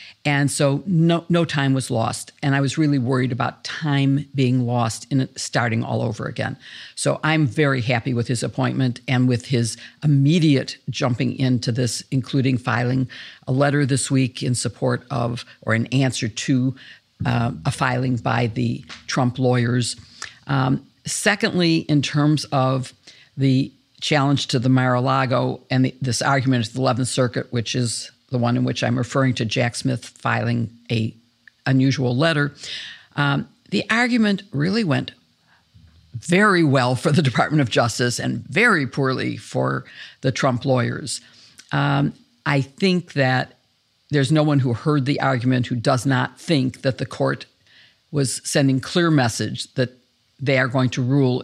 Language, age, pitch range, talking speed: English, 50-69, 125-140 Hz, 160 wpm